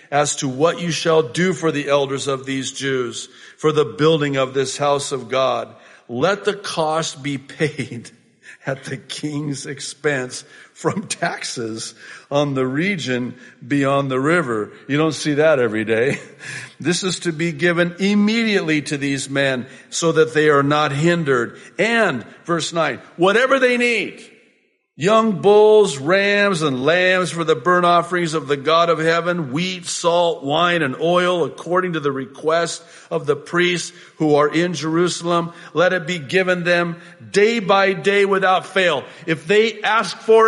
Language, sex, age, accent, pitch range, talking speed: English, male, 50-69, American, 145-185 Hz, 160 wpm